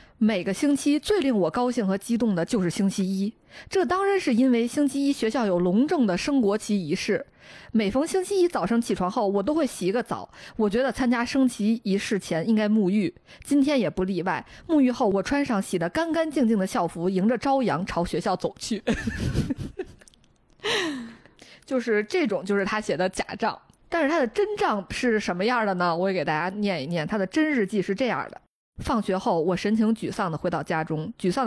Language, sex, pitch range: Chinese, female, 185-255 Hz